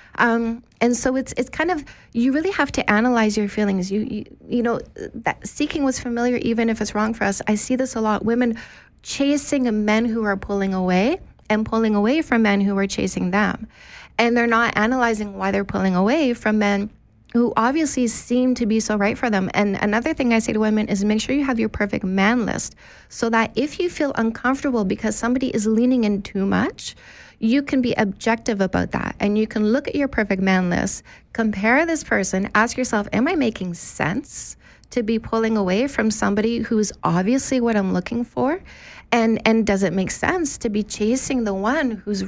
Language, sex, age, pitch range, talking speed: English, female, 30-49, 205-250 Hz, 205 wpm